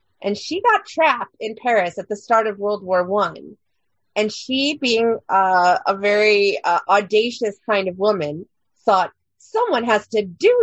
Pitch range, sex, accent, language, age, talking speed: 195-255 Hz, female, American, English, 30-49, 165 wpm